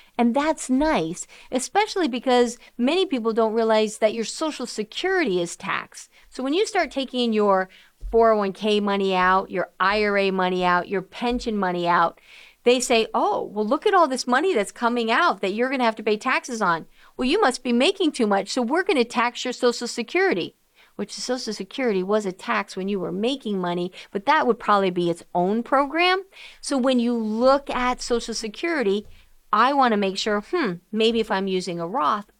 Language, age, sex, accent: English, 50-69, female, American